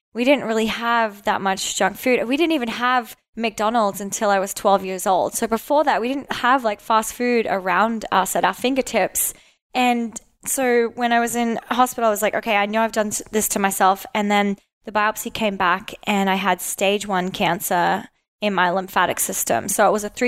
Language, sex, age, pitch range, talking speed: English, female, 20-39, 200-235 Hz, 210 wpm